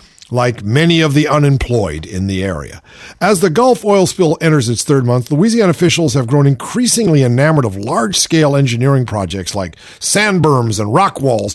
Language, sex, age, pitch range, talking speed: English, male, 50-69, 125-175 Hz, 175 wpm